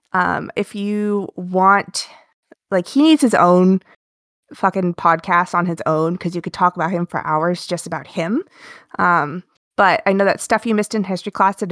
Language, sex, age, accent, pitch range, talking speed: English, female, 20-39, American, 175-220 Hz, 190 wpm